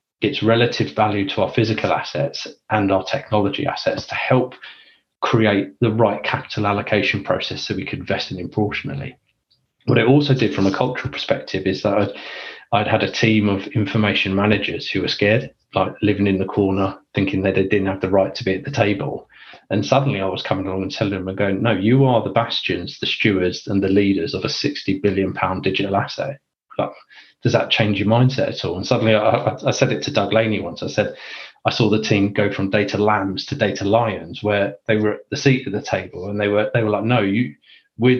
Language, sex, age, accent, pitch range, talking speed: English, male, 30-49, British, 100-115 Hz, 220 wpm